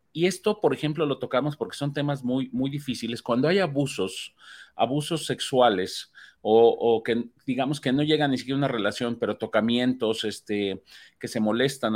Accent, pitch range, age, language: Mexican, 120-160 Hz, 40-59, Spanish